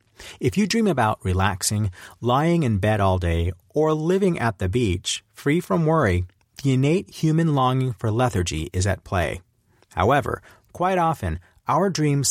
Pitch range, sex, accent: 95-135 Hz, male, American